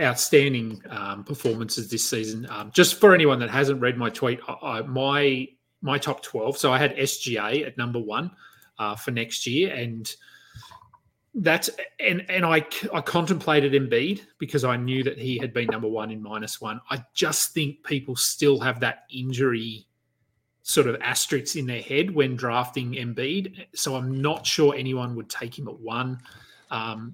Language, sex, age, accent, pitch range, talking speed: English, male, 30-49, Australian, 120-145 Hz, 175 wpm